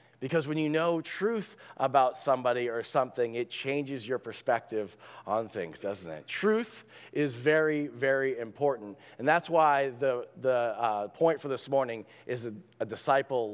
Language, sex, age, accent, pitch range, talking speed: English, male, 40-59, American, 130-165 Hz, 160 wpm